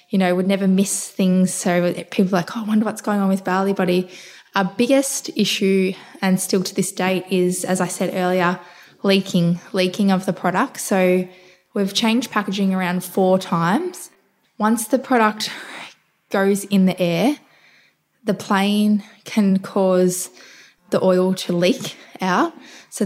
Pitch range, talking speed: 185-215 Hz, 160 wpm